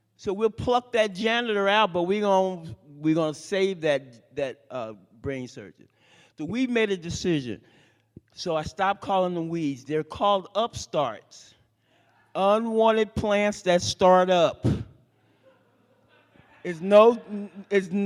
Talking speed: 125 wpm